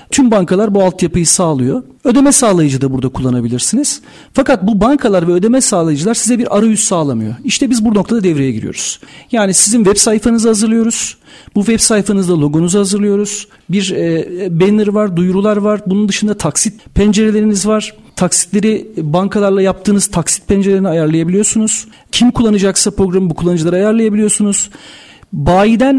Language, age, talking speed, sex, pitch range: Turkish, 40-59, 135 wpm, male, 180-225 Hz